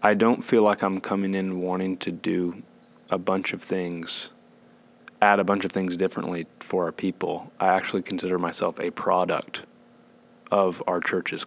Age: 30-49